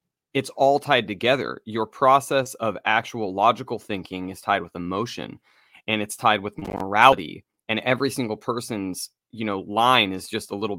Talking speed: 165 wpm